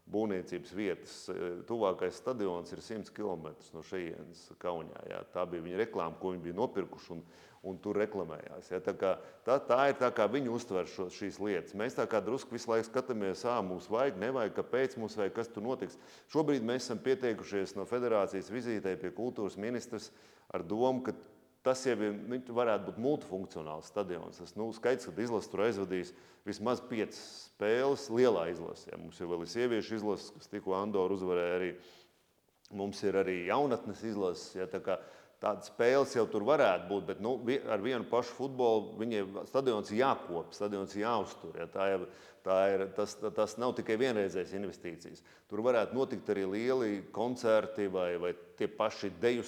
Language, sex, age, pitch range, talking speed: English, male, 30-49, 95-120 Hz, 165 wpm